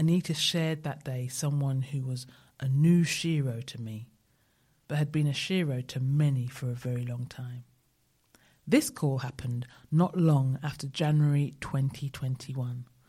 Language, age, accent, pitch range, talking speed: English, 40-59, British, 125-150 Hz, 145 wpm